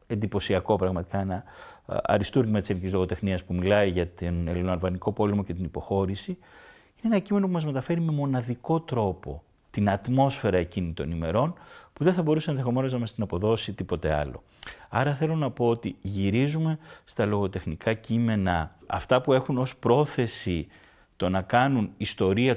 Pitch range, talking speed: 90-120 Hz, 155 wpm